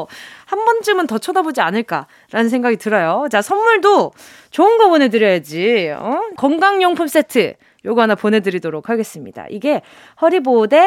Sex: female